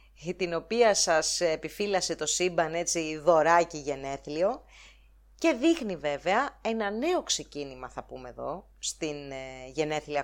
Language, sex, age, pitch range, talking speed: English, female, 30-49, 150-230 Hz, 125 wpm